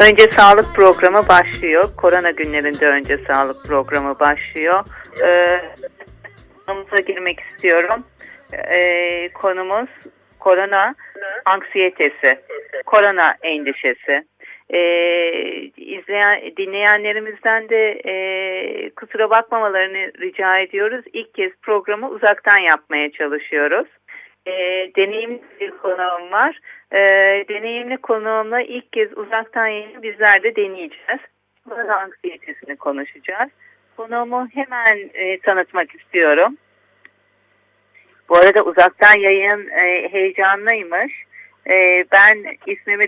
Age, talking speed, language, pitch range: 50-69, 90 wpm, Turkish, 180-220 Hz